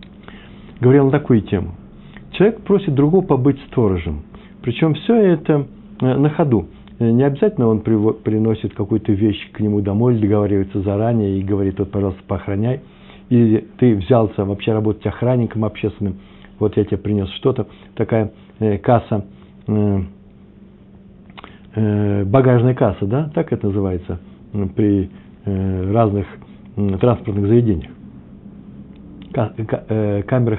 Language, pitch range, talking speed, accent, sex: Russian, 100-135 Hz, 110 wpm, native, male